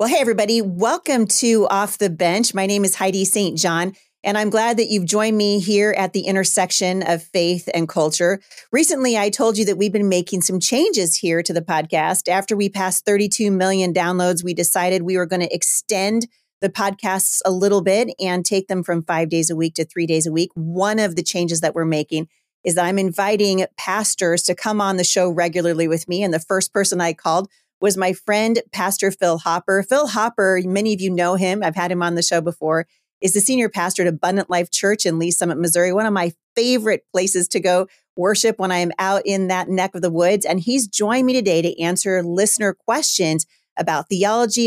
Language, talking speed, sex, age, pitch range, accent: English, 215 wpm, female, 40-59, 175-205 Hz, American